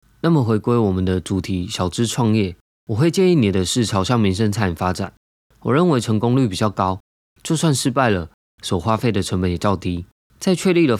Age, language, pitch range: 20-39, Chinese, 95-125 Hz